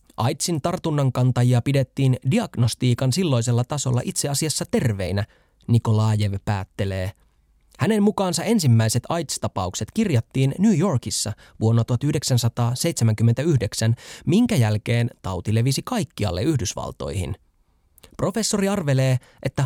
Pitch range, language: 105-145 Hz, Finnish